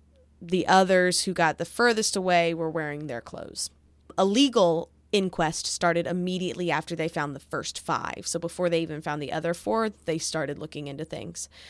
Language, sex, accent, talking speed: English, female, American, 180 wpm